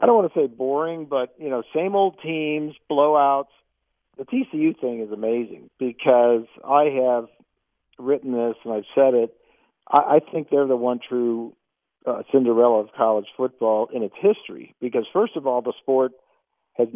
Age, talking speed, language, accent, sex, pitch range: 50-69, 175 wpm, English, American, male, 115-150 Hz